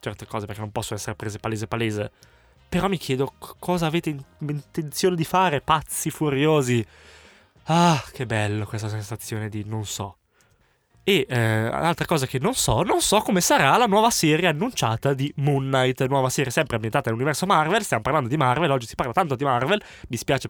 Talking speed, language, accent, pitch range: 185 wpm, Italian, native, 115-160 Hz